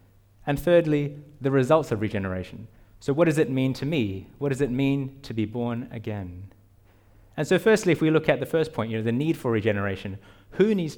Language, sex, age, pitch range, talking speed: English, male, 20-39, 105-135 Hz, 215 wpm